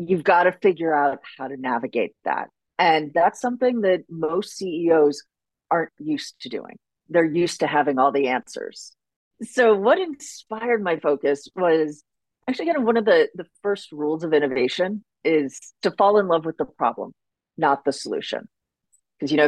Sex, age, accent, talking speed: female, 40-59, American, 180 wpm